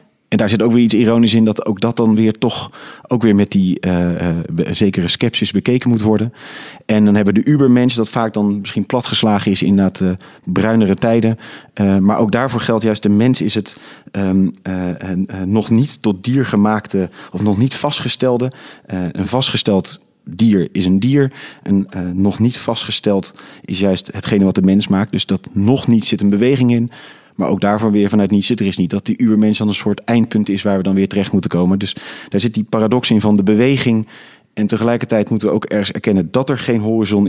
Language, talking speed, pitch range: Dutch, 215 wpm, 100-120 Hz